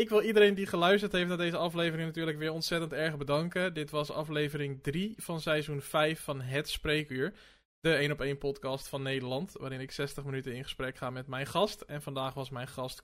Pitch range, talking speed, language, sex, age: 135-170 Hz, 210 wpm, Dutch, male, 20-39